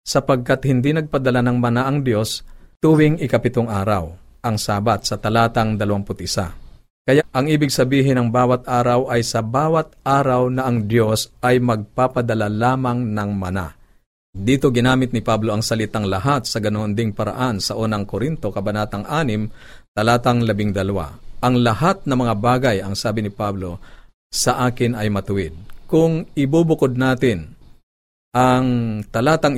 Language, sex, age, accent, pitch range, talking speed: Filipino, male, 50-69, native, 105-125 Hz, 140 wpm